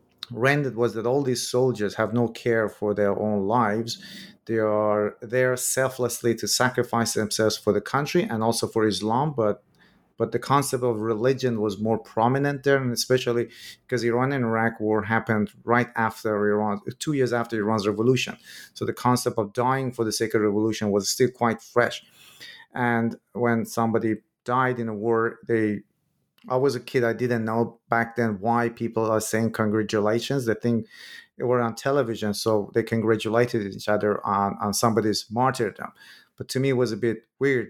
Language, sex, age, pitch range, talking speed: English, male, 30-49, 105-125 Hz, 175 wpm